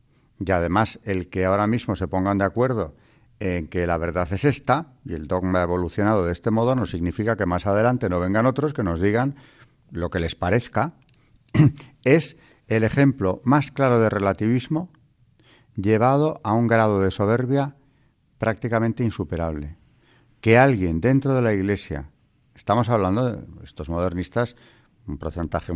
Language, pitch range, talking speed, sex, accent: Spanish, 90-125 Hz, 155 wpm, male, Spanish